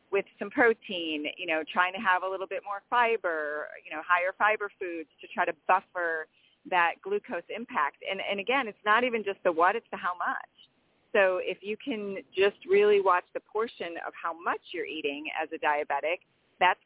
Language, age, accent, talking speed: English, 40-59, American, 200 wpm